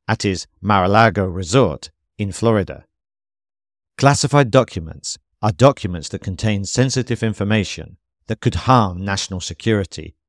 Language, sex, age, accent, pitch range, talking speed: English, male, 50-69, British, 90-120 Hz, 110 wpm